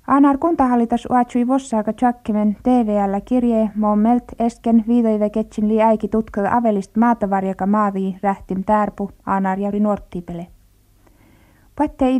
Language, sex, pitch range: Finnish, female, 200-240 Hz